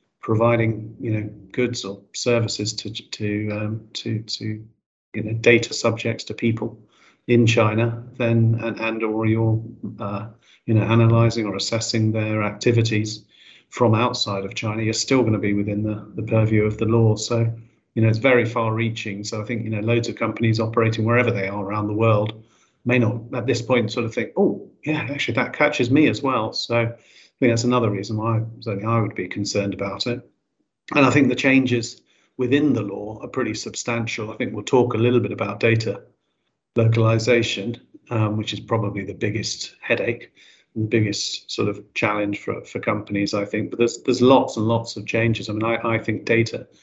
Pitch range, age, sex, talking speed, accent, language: 110-120 Hz, 40-59, male, 195 wpm, British, English